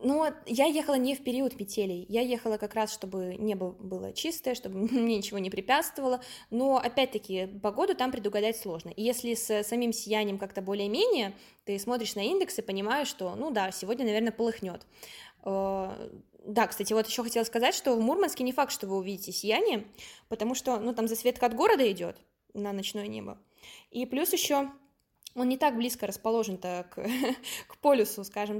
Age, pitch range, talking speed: 20-39, 205-250 Hz, 175 wpm